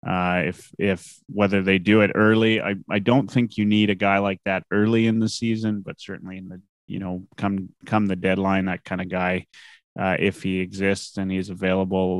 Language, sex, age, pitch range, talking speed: English, male, 30-49, 95-110 Hz, 210 wpm